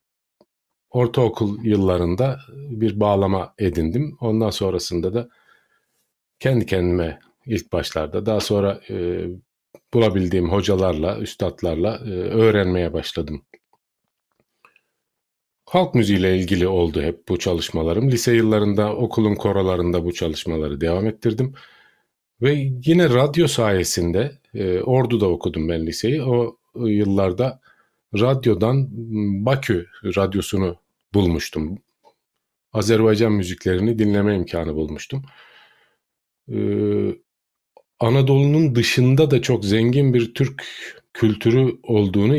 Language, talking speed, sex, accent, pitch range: Turkish, 90 wpm, male, native, 95-115 Hz